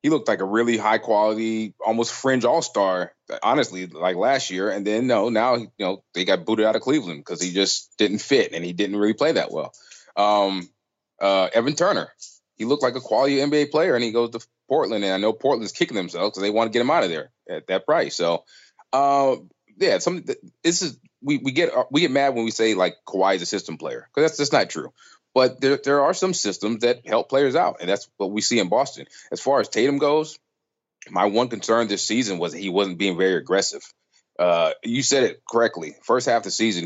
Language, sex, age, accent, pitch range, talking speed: English, male, 20-39, American, 95-125 Hz, 230 wpm